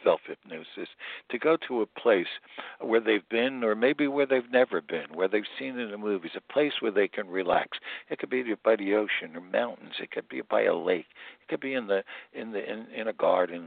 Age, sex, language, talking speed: 60-79, male, English, 235 wpm